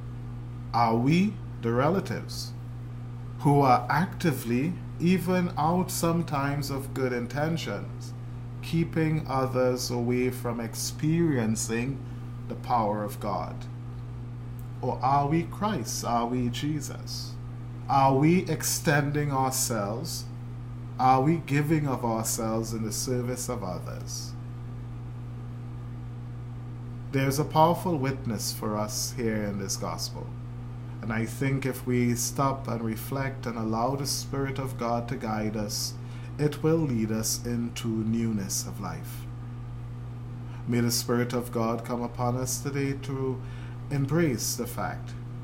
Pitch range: 120-125 Hz